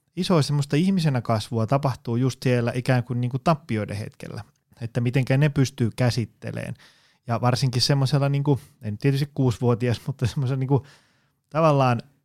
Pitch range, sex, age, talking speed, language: 115-145 Hz, male, 20-39, 150 wpm, Finnish